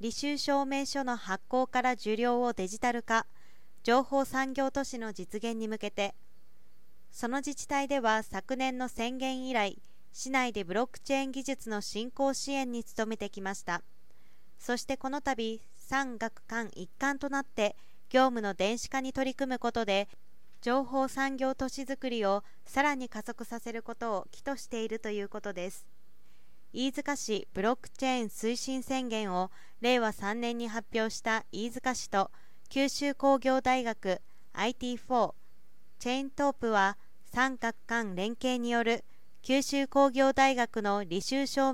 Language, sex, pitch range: Japanese, female, 215-265 Hz